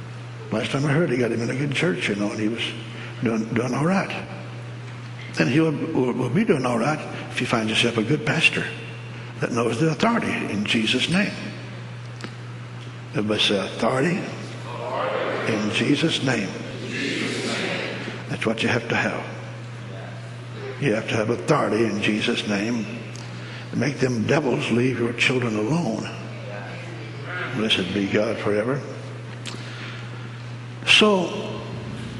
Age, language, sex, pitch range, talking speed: 60-79, English, male, 115-120 Hz, 135 wpm